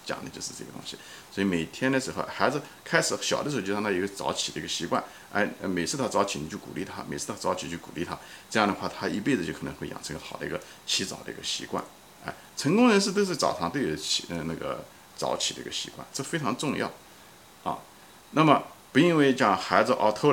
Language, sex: Chinese, male